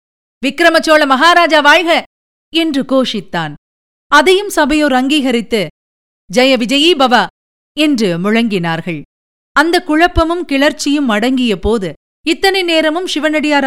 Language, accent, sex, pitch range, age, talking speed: Tamil, native, female, 210-285 Hz, 50-69, 85 wpm